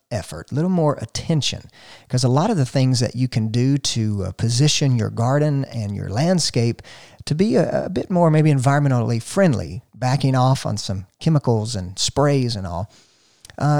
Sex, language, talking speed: male, English, 185 wpm